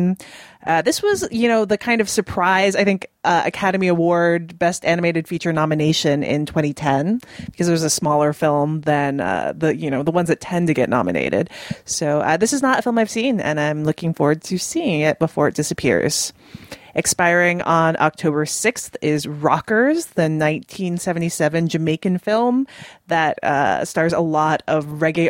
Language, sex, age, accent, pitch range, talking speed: English, female, 20-39, American, 155-190 Hz, 175 wpm